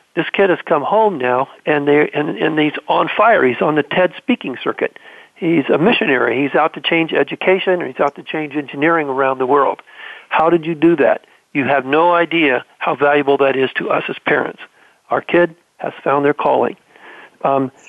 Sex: male